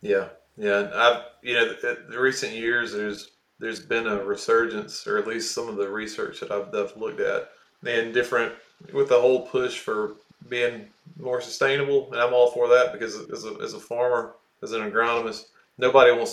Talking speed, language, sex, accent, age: 200 wpm, English, male, American, 20-39